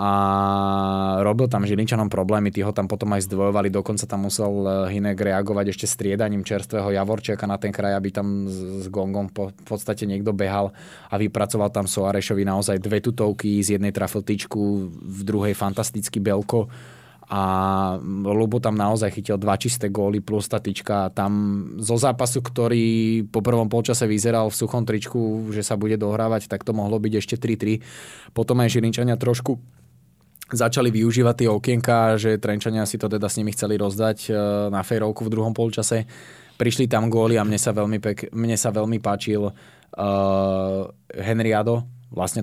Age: 20-39